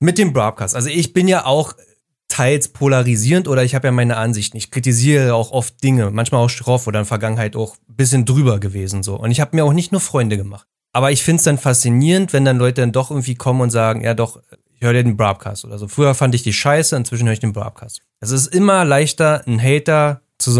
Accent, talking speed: German, 250 wpm